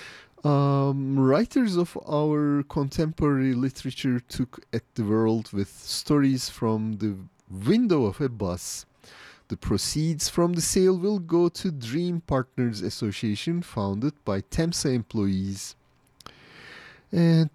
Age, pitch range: 30-49, 110-165 Hz